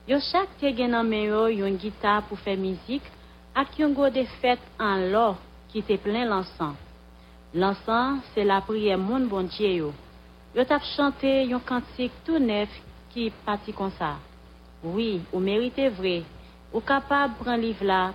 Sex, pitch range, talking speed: female, 185-250 Hz, 150 wpm